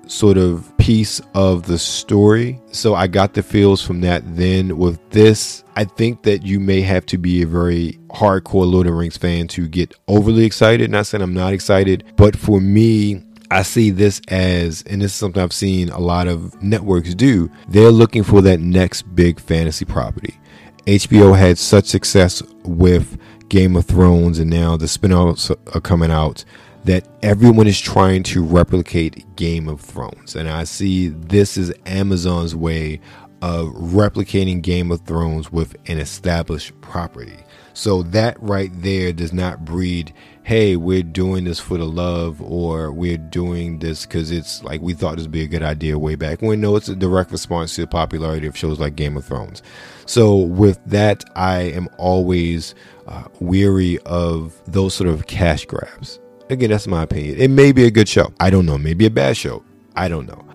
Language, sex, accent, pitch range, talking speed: English, male, American, 85-105 Hz, 185 wpm